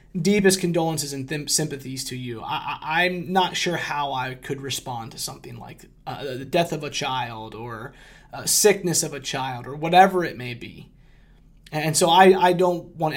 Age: 30-49